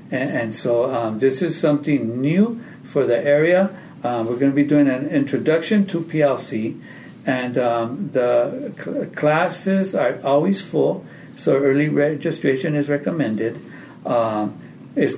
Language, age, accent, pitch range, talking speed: English, 60-79, American, 125-150 Hz, 140 wpm